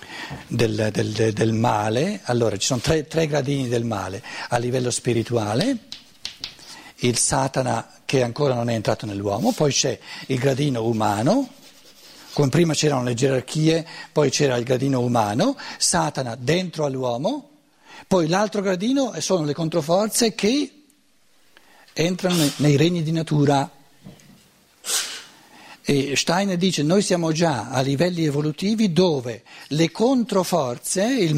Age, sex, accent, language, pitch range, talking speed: 60-79, male, native, Italian, 130-185 Hz, 125 wpm